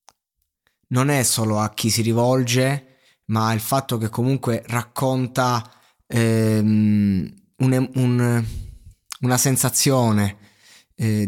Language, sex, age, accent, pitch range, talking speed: Italian, male, 20-39, native, 105-135 Hz, 100 wpm